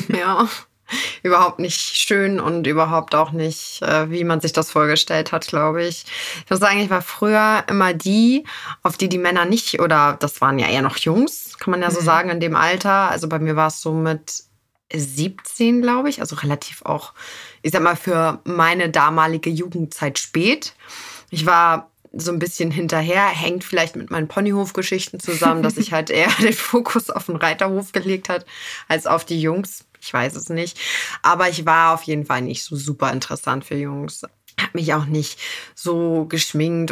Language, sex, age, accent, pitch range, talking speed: German, female, 20-39, German, 155-185 Hz, 185 wpm